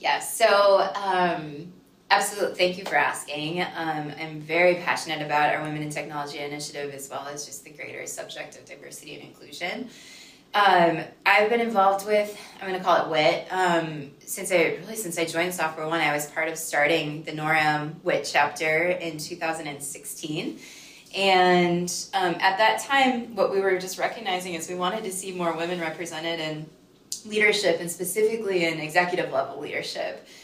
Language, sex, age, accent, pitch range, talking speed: English, female, 20-39, American, 155-190 Hz, 170 wpm